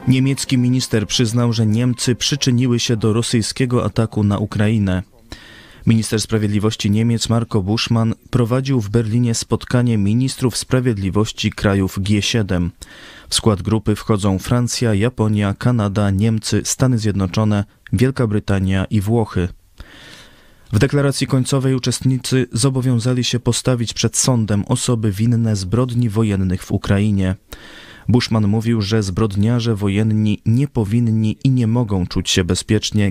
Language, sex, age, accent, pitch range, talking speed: Polish, male, 20-39, native, 100-120 Hz, 120 wpm